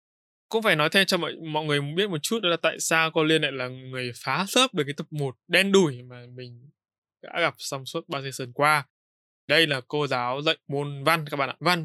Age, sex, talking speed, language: 20-39, male, 250 wpm, Vietnamese